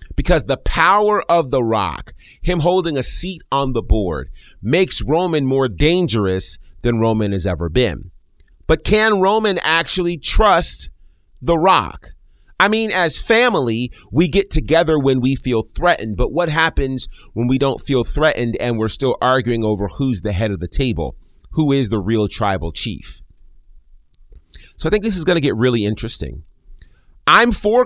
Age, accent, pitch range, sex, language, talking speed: 30-49, American, 95-160 Hz, male, English, 165 wpm